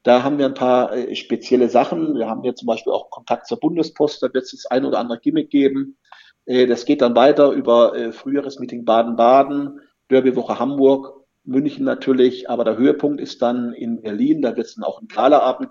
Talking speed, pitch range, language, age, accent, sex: 205 wpm, 120-150 Hz, German, 50-69, German, male